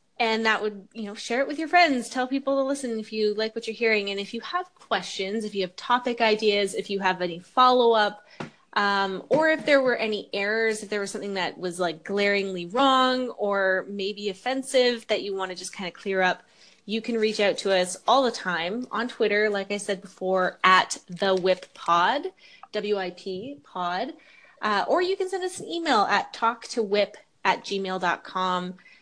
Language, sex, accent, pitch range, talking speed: English, female, American, 180-225 Hz, 195 wpm